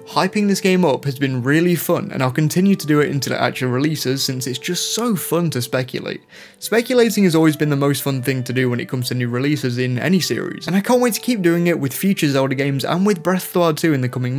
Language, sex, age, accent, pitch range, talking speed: English, male, 20-39, British, 130-180 Hz, 275 wpm